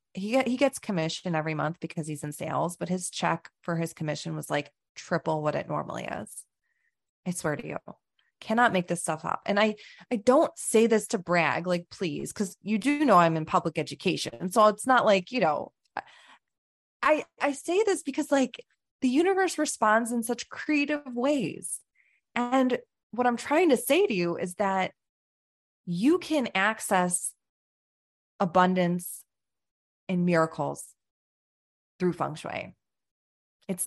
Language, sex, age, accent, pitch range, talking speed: English, female, 20-39, American, 170-230 Hz, 155 wpm